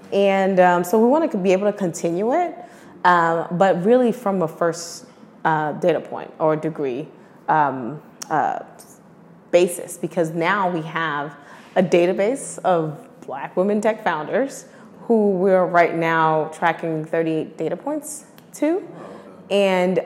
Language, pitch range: English, 160-200 Hz